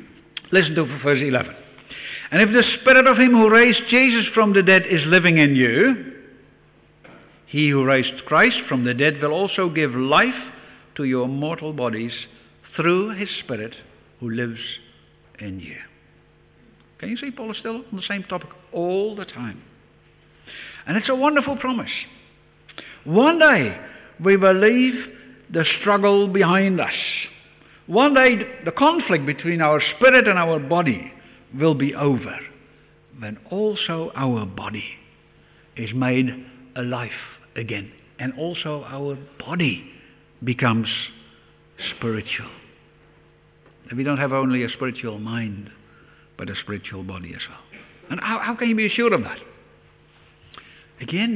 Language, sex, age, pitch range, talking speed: English, male, 60-79, 130-205 Hz, 140 wpm